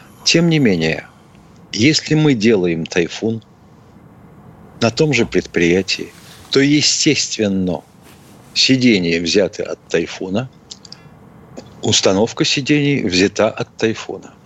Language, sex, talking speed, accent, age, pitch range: Russian, male, 90 wpm, native, 50-69, 100-140 Hz